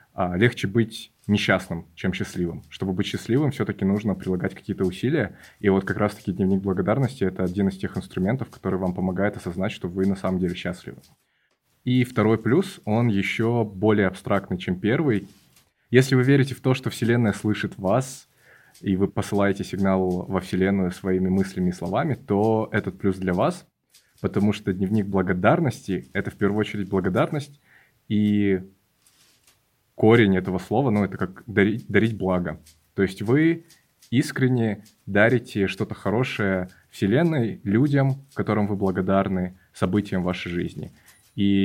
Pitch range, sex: 95-120 Hz, male